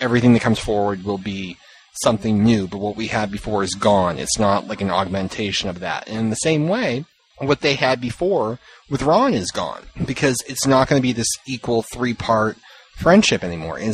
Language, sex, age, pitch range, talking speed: English, male, 30-49, 105-140 Hz, 200 wpm